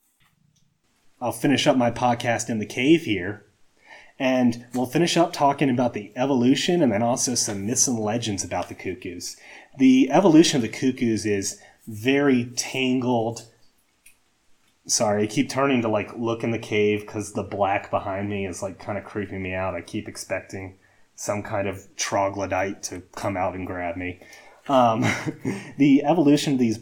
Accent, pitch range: American, 105-135 Hz